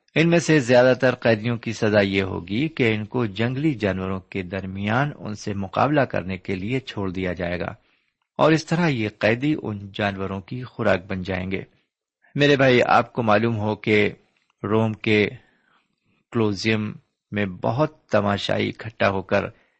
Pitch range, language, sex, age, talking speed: 100-130 Hz, Urdu, male, 50-69, 165 wpm